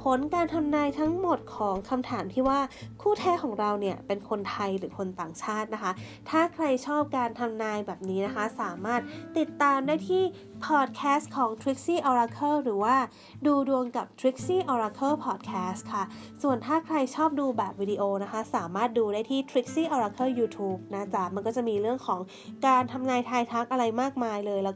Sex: female